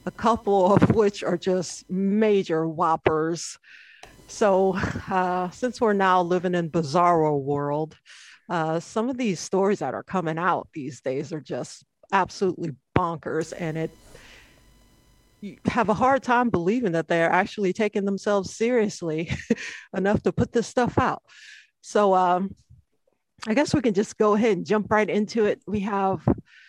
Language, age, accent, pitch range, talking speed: English, 50-69, American, 170-215 Hz, 155 wpm